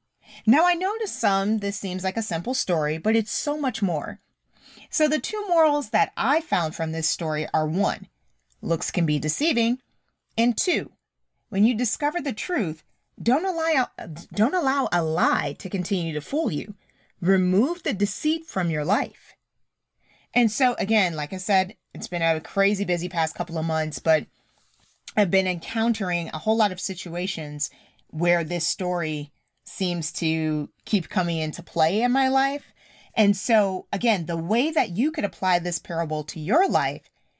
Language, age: English, 30-49